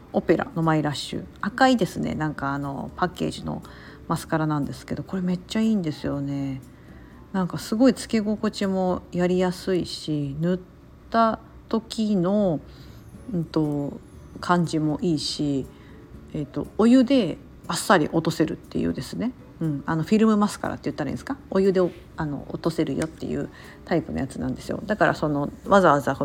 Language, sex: Japanese, female